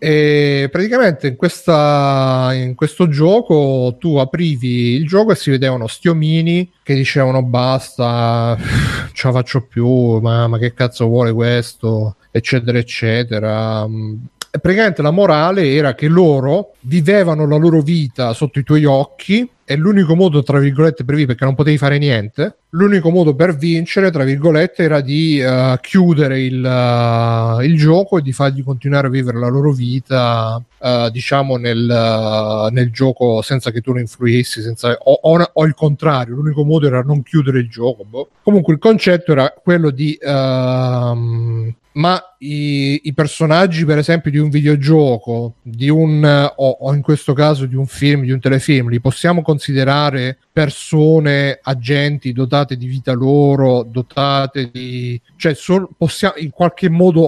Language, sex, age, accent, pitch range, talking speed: Italian, male, 30-49, native, 125-155 Hz, 155 wpm